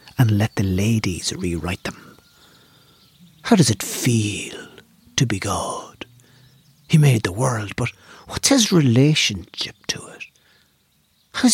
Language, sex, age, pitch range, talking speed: English, male, 60-79, 110-155 Hz, 125 wpm